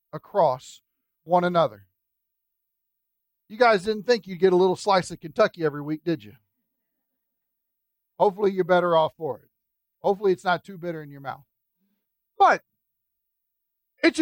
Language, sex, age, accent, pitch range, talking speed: English, male, 40-59, American, 150-220 Hz, 145 wpm